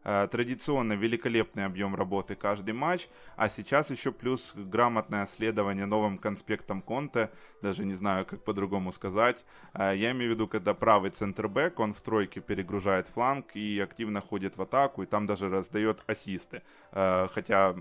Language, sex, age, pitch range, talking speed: Ukrainian, male, 20-39, 100-120 Hz, 150 wpm